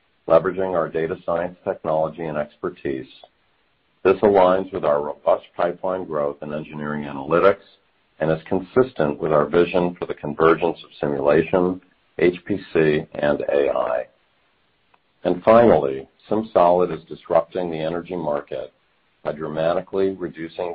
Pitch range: 75-95 Hz